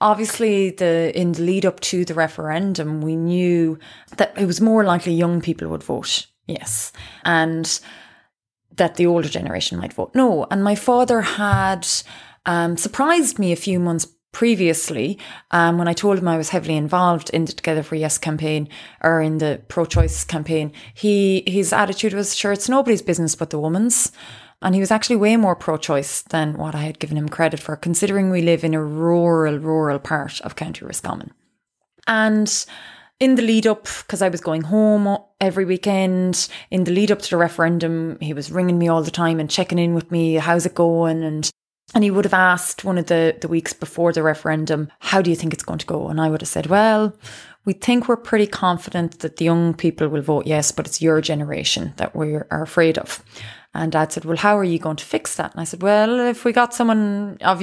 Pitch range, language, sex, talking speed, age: 160-205 Hz, English, female, 210 wpm, 20-39